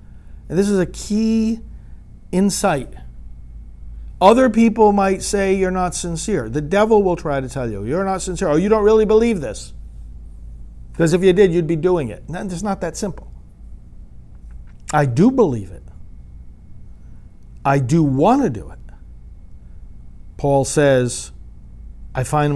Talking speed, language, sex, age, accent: 145 wpm, English, male, 50-69, American